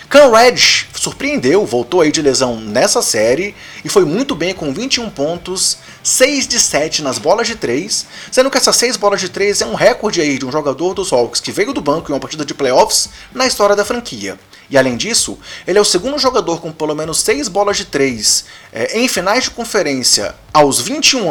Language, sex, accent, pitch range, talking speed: Portuguese, male, Brazilian, 135-210 Hz, 210 wpm